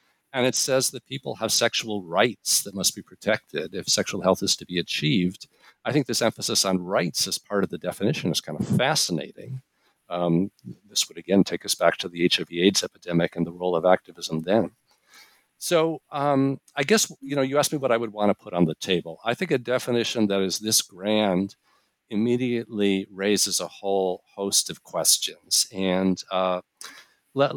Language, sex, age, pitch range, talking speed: English, male, 50-69, 95-120 Hz, 190 wpm